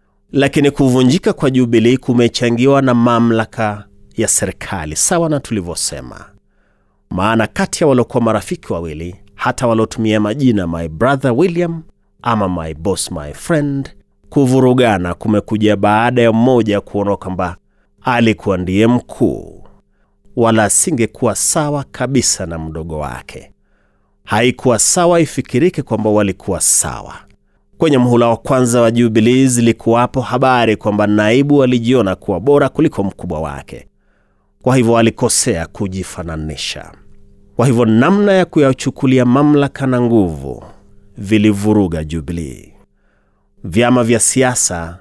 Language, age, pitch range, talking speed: Swahili, 30-49, 95-125 Hz, 115 wpm